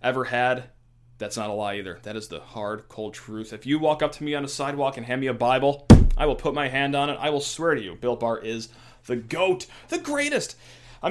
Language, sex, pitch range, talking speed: English, male, 120-145 Hz, 255 wpm